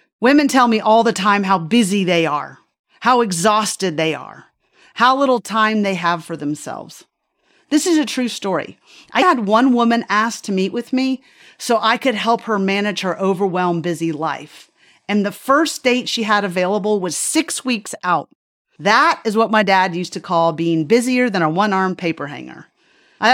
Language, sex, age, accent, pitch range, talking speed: English, female, 40-59, American, 180-245 Hz, 190 wpm